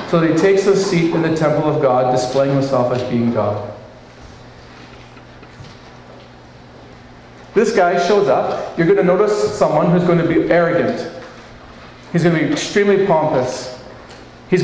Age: 40-59